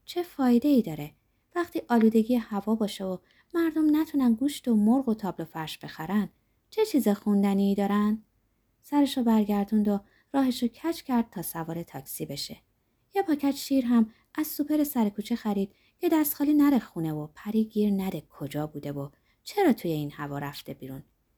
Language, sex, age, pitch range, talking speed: Persian, female, 20-39, 165-270 Hz, 165 wpm